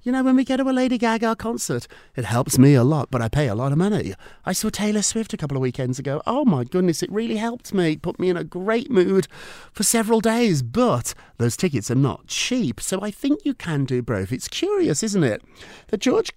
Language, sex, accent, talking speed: English, male, British, 240 wpm